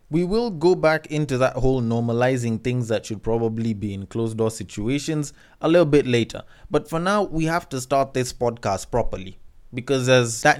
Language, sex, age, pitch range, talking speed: English, male, 20-39, 125-170 Hz, 190 wpm